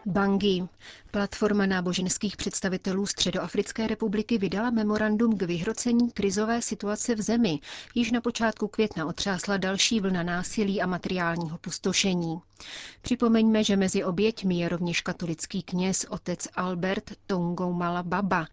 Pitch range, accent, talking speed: 180-215 Hz, native, 120 wpm